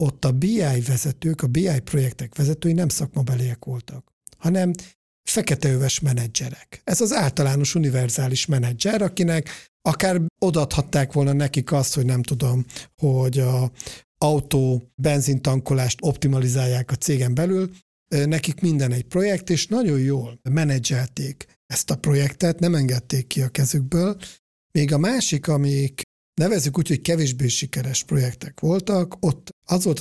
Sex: male